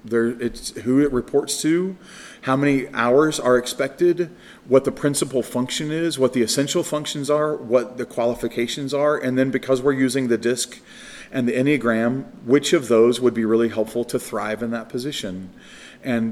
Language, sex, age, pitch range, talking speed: English, male, 40-59, 115-145 Hz, 175 wpm